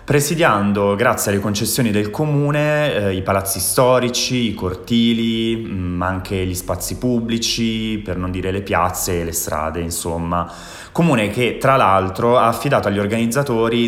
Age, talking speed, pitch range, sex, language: 20-39, 145 wpm, 90-105 Hz, male, Italian